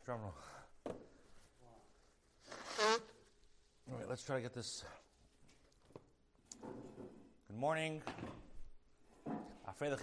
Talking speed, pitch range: 65 wpm, 115-150 Hz